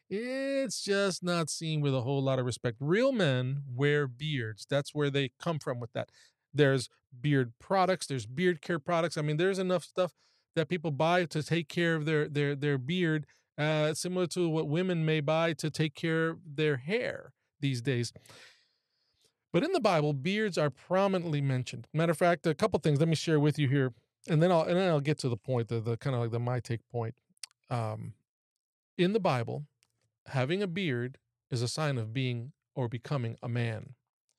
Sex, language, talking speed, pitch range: male, English, 200 wpm, 130-175 Hz